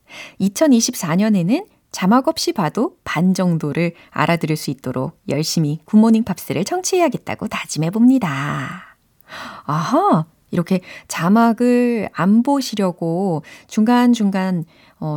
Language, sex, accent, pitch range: Korean, female, native, 160-245 Hz